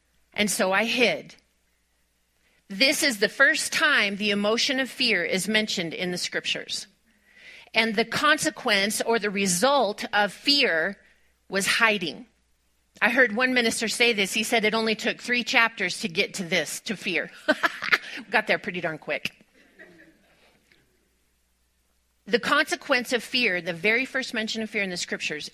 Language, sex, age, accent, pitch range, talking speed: English, female, 40-59, American, 180-250 Hz, 155 wpm